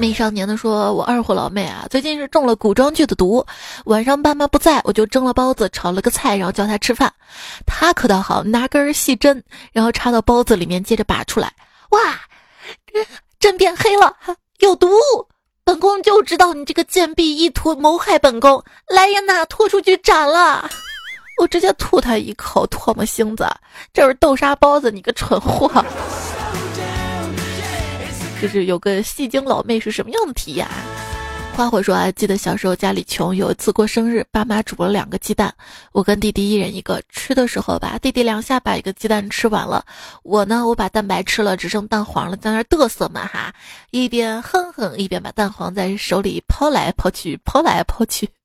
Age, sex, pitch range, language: 20-39, female, 205-295 Hz, Chinese